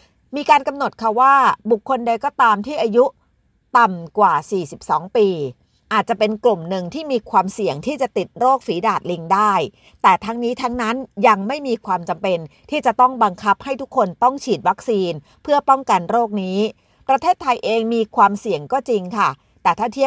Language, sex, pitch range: Thai, female, 190-250 Hz